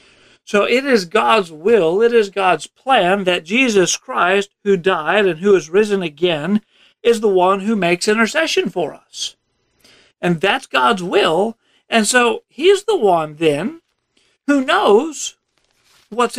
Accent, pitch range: American, 175-235 Hz